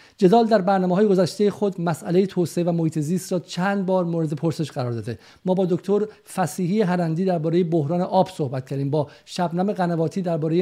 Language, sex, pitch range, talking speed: Persian, male, 165-190 Hz, 180 wpm